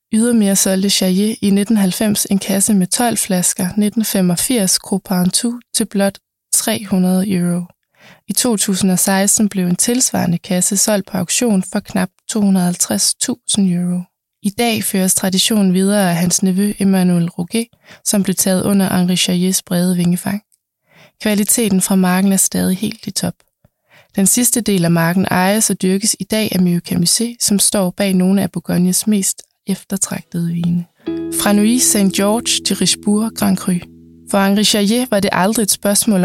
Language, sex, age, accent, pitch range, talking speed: Danish, female, 20-39, native, 185-210 Hz, 155 wpm